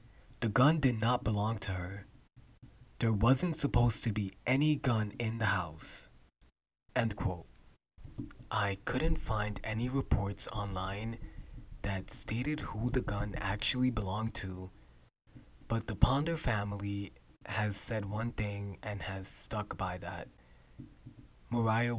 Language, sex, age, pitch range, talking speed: English, male, 20-39, 100-120 Hz, 125 wpm